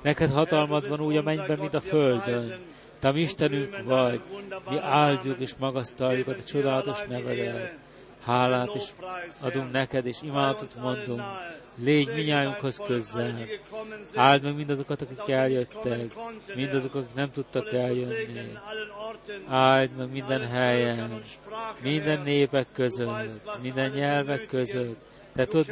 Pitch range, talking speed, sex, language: 125-155 Hz, 120 wpm, male, Hungarian